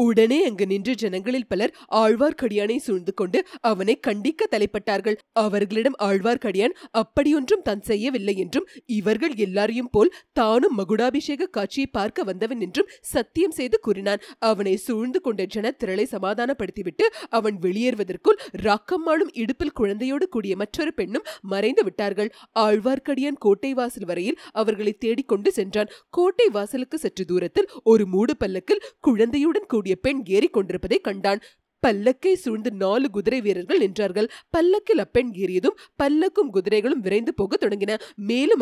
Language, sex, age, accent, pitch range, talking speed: Tamil, female, 30-49, native, 205-285 Hz, 105 wpm